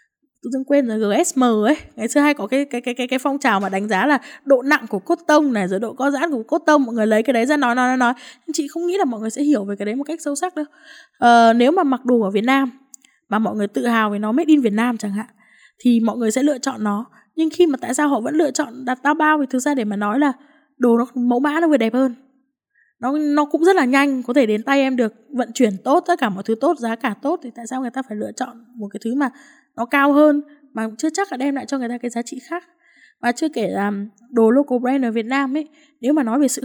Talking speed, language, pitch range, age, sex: 295 wpm, Vietnamese, 230-295 Hz, 10-29, female